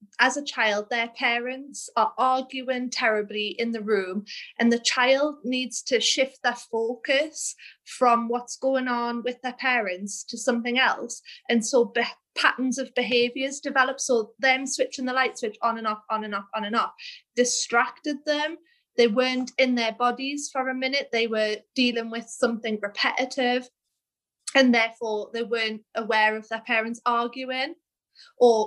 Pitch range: 230-265 Hz